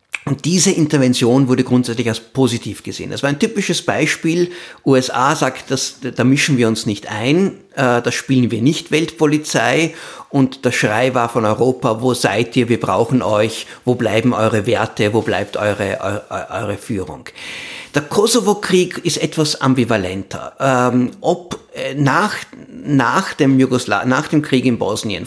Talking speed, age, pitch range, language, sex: 150 wpm, 50-69, 115-145 Hz, German, male